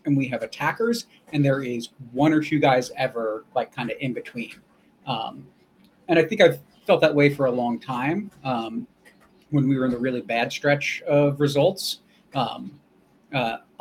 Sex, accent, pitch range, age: male, American, 130-160 Hz, 30-49